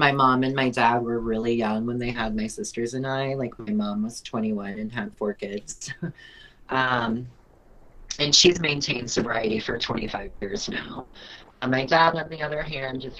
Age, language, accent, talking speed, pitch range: 30-49, English, American, 185 wpm, 115-135 Hz